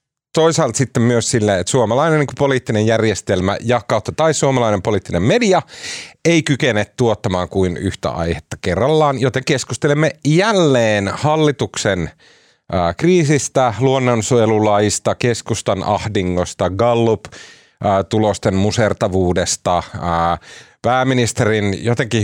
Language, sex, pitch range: Finnish, male, 105-155 Hz